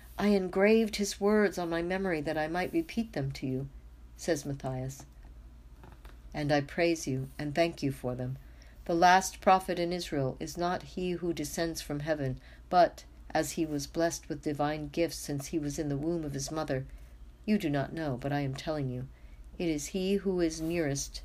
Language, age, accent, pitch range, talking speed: English, 60-79, American, 125-170 Hz, 195 wpm